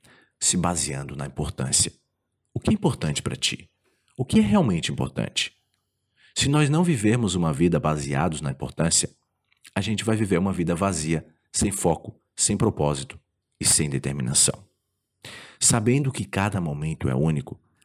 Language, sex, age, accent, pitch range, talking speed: Portuguese, male, 40-59, Brazilian, 80-115 Hz, 150 wpm